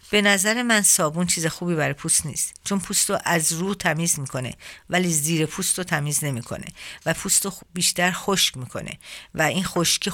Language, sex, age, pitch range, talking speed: Persian, female, 50-69, 150-180 Hz, 180 wpm